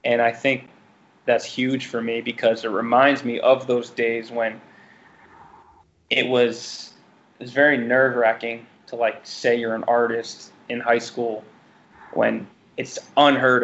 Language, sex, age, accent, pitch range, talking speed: English, male, 20-39, American, 115-130 Hz, 140 wpm